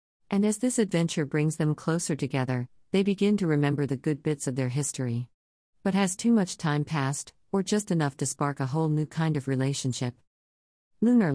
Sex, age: female, 50-69